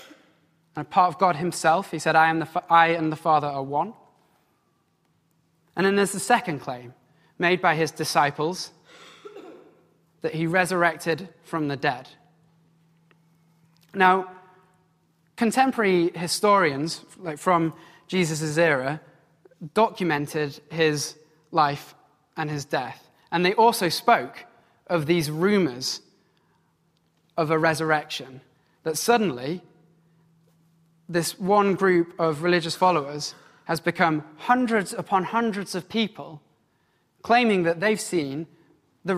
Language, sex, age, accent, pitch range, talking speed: English, male, 20-39, British, 155-185 Hz, 110 wpm